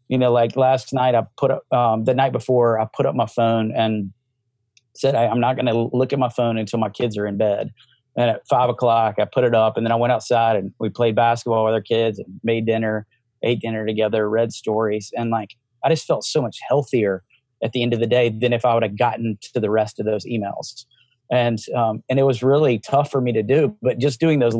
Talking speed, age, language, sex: 250 wpm, 30-49, English, male